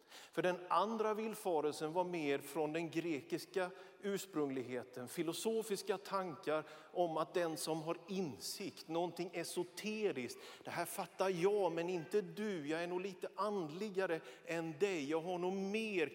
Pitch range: 160-195 Hz